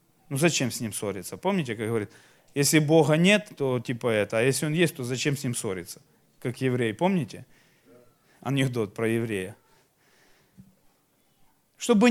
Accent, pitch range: native, 140-195 Hz